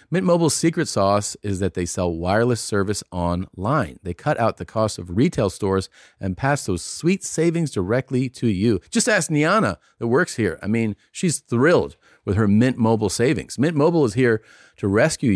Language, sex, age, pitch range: English, male, 40-59, 100-150 Hz